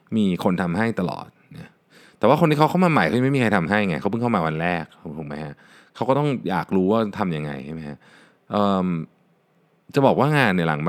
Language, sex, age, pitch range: Thai, male, 20-39, 90-130 Hz